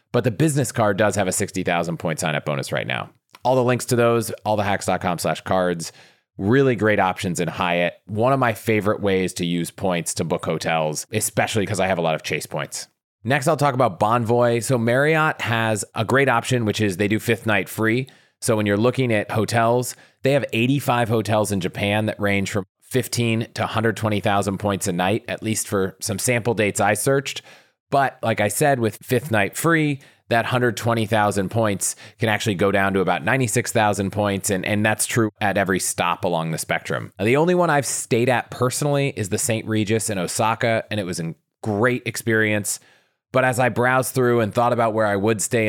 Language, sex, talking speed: English, male, 205 wpm